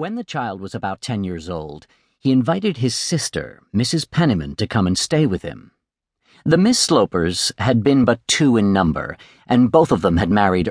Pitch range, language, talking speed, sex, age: 90-130 Hz, English, 195 wpm, male, 50-69